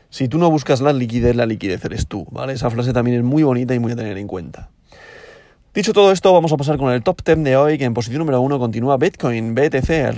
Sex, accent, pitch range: male, Spanish, 125-155 Hz